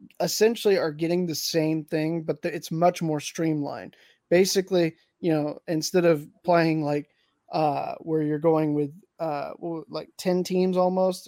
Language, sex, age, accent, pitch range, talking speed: English, male, 20-39, American, 160-180 Hz, 150 wpm